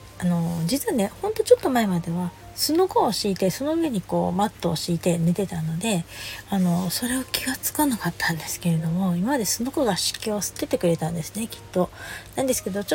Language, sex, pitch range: Japanese, female, 165-230 Hz